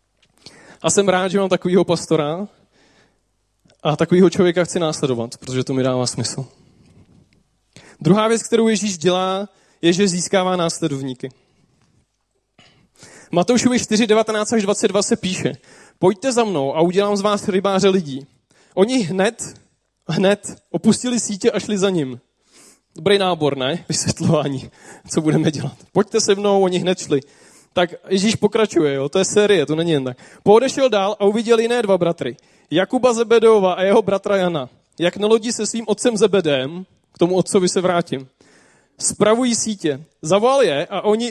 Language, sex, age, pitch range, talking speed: Czech, male, 20-39, 160-205 Hz, 155 wpm